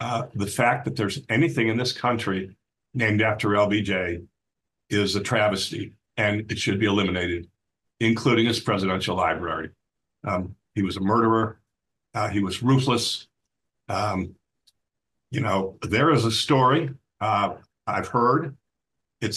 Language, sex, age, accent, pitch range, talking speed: English, male, 50-69, American, 100-120 Hz, 135 wpm